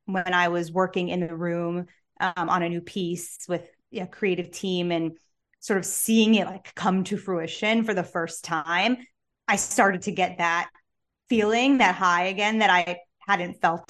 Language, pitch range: English, 180-215 Hz